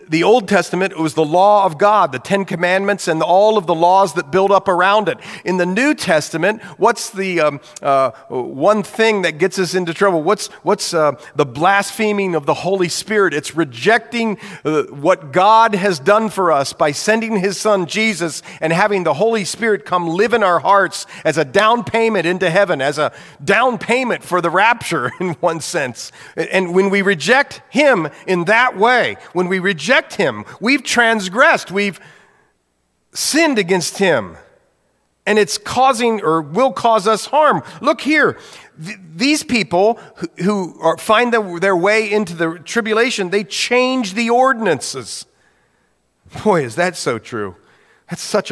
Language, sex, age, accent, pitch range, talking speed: English, male, 40-59, American, 175-225 Hz, 170 wpm